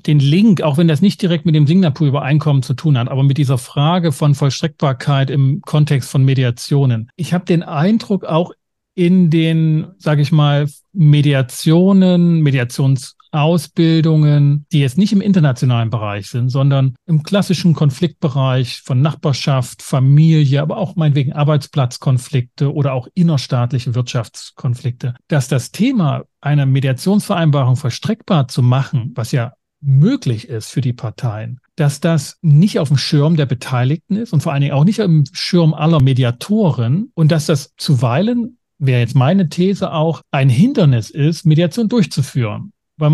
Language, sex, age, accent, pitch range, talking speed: German, male, 40-59, German, 135-175 Hz, 150 wpm